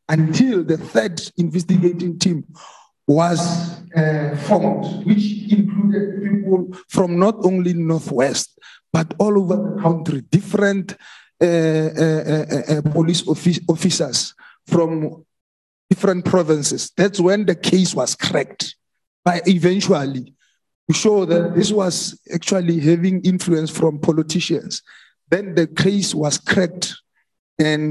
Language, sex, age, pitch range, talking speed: English, male, 50-69, 160-195 Hz, 120 wpm